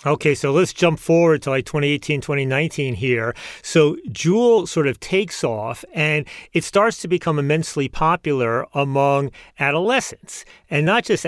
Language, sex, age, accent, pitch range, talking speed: English, male, 40-59, American, 135-165 Hz, 150 wpm